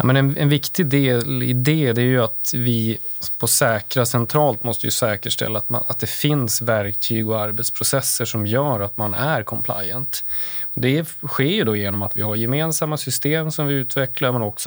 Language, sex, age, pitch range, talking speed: Swedish, male, 20-39, 115-140 Hz, 180 wpm